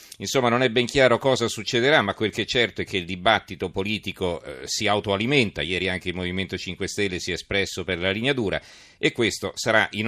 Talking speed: 220 wpm